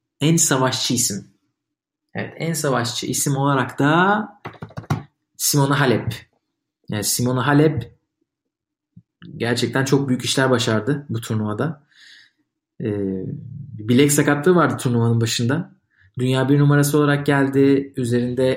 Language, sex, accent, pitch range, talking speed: Turkish, male, native, 125-150 Hz, 105 wpm